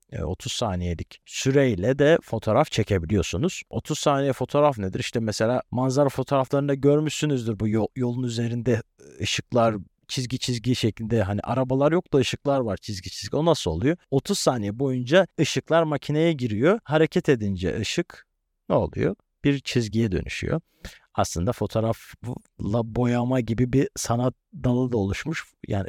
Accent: native